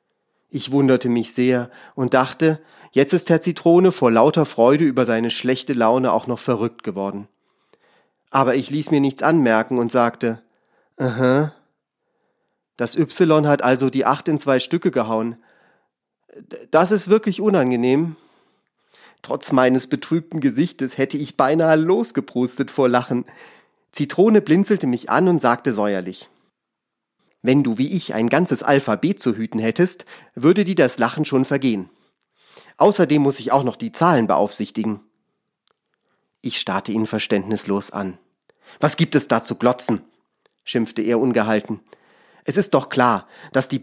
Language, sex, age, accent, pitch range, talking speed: German, male, 40-59, German, 120-155 Hz, 145 wpm